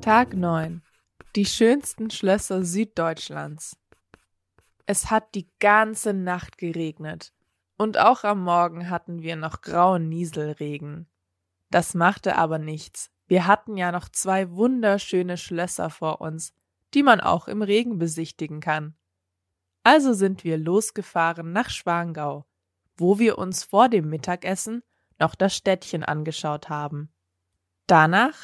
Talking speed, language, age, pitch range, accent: 125 wpm, English, 20-39, 155-195 Hz, German